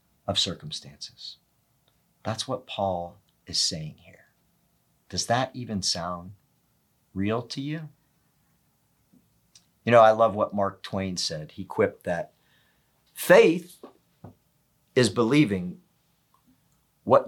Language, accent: English, American